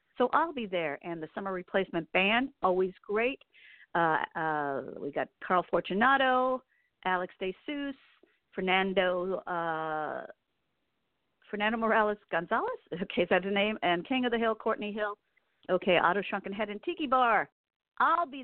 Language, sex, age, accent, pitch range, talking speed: English, female, 50-69, American, 185-250 Hz, 145 wpm